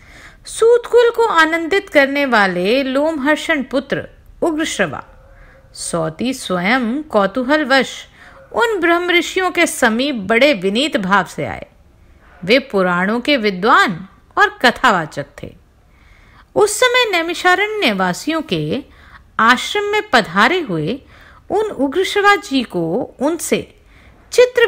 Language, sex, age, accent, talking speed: Hindi, female, 50-69, native, 95 wpm